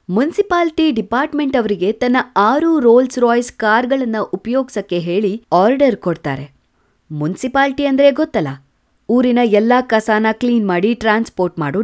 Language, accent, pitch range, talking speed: Kannada, native, 180-265 Hz, 110 wpm